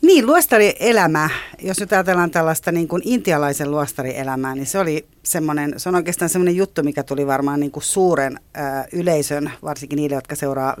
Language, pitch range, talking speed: Finnish, 135-170 Hz, 165 wpm